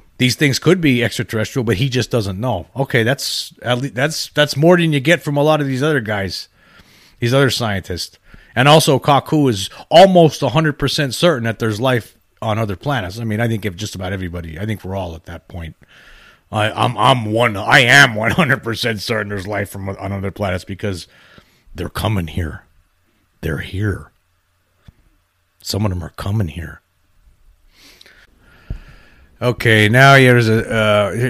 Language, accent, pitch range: English, American, 90-120 Hz